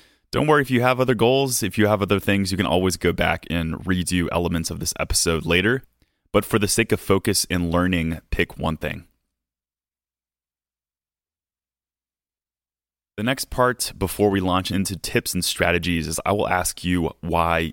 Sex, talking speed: male, 175 wpm